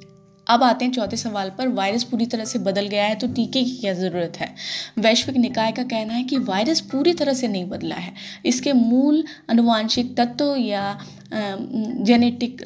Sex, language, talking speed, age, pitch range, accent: female, Hindi, 180 wpm, 20-39, 205-250 Hz, native